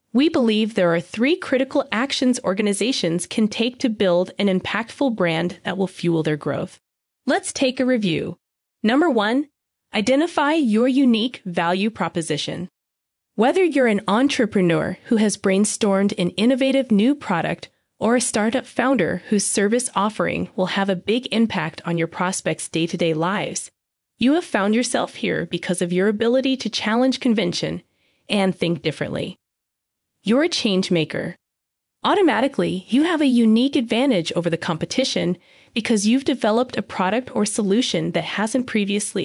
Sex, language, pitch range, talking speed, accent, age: female, English, 180-260 Hz, 150 wpm, American, 20-39